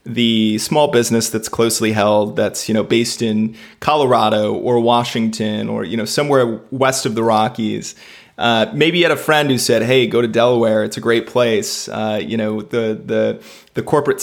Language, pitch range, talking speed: English, 110-125 Hz, 190 wpm